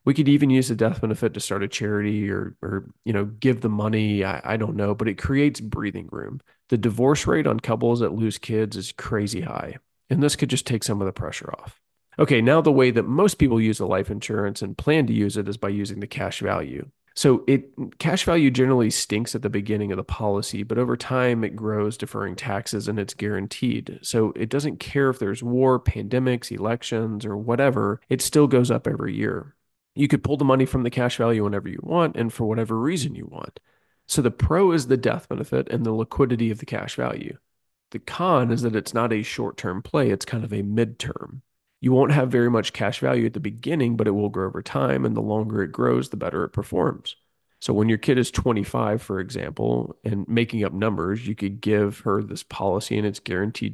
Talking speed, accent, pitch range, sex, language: 225 wpm, American, 105-125 Hz, male, English